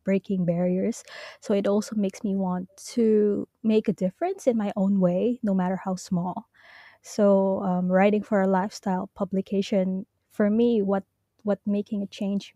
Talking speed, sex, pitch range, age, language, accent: 165 wpm, female, 185-220 Hz, 20-39, English, Filipino